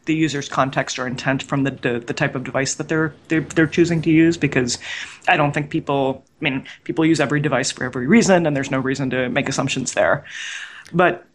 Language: English